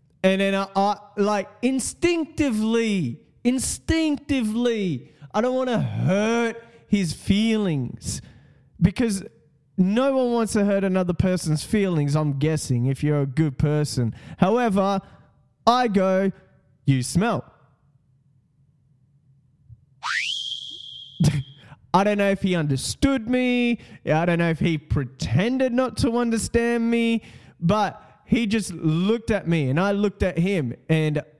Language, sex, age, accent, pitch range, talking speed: English, male, 20-39, Australian, 135-190 Hz, 120 wpm